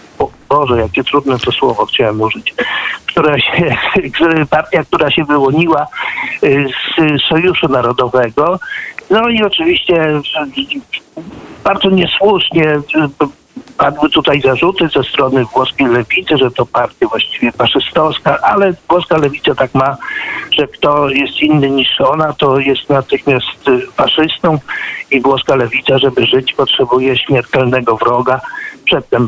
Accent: native